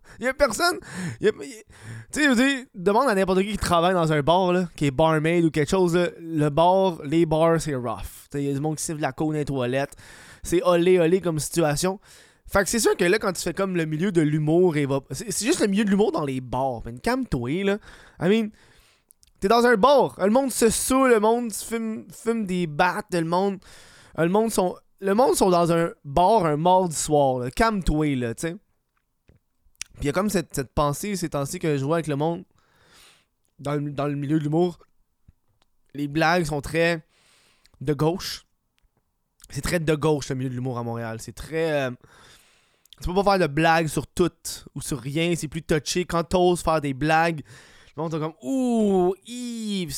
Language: French